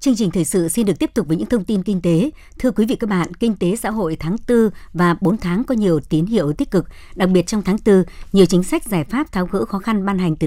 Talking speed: 290 wpm